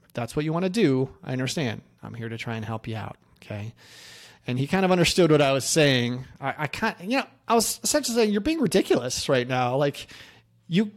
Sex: male